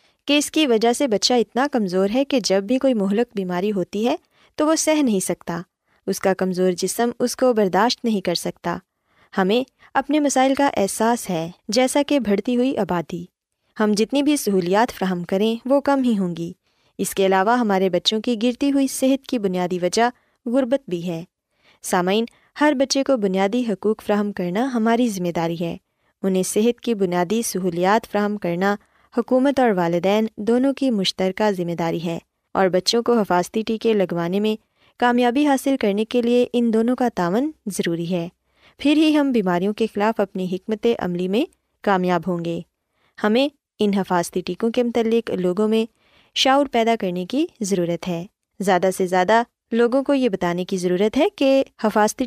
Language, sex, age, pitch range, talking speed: Urdu, female, 20-39, 185-250 Hz, 175 wpm